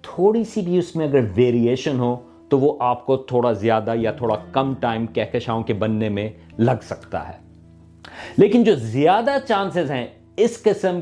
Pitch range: 125-180 Hz